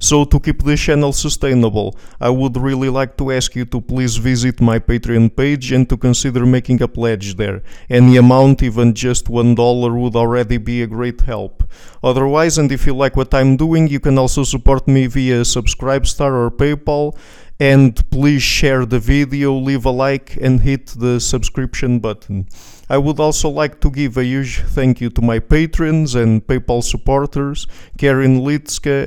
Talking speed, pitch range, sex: 180 wpm, 125-140 Hz, male